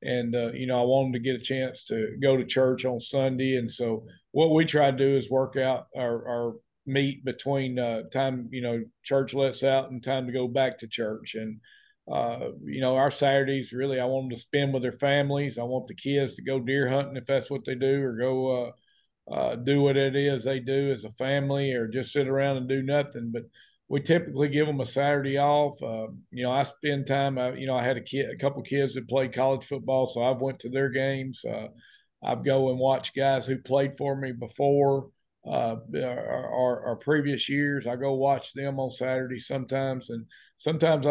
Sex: male